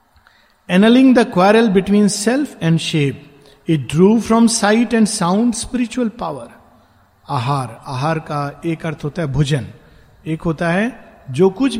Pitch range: 145-205 Hz